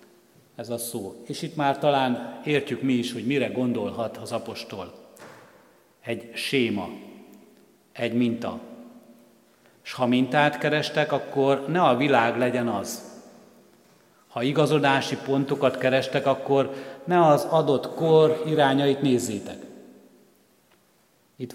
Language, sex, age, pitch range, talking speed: Hungarian, male, 60-79, 120-140 Hz, 115 wpm